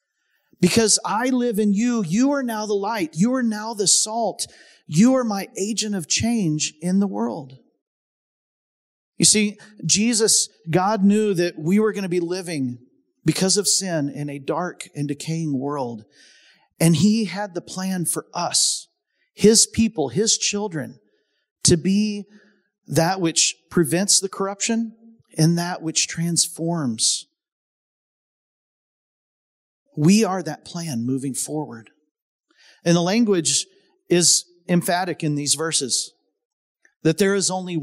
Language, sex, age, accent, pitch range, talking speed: English, male, 40-59, American, 160-215 Hz, 135 wpm